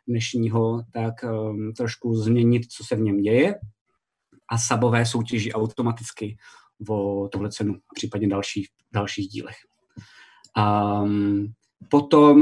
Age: 20-39